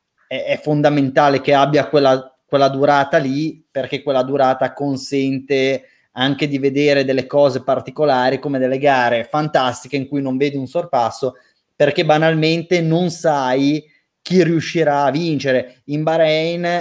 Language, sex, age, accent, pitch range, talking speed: Italian, male, 20-39, native, 130-155 Hz, 135 wpm